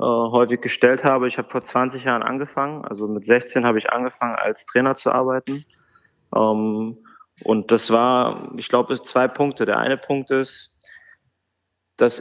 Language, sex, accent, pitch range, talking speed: German, male, German, 115-135 Hz, 160 wpm